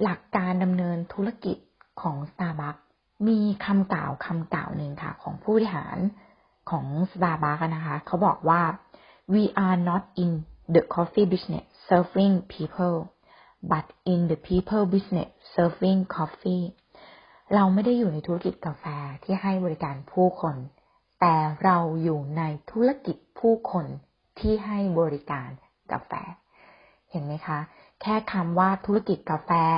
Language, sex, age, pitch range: Thai, female, 30-49, 155-195 Hz